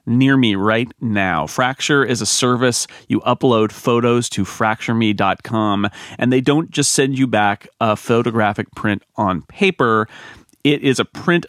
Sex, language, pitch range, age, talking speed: male, English, 110-135 Hz, 30-49, 150 wpm